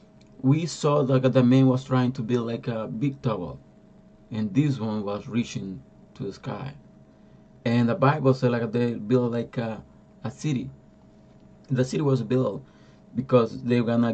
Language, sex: Spanish, male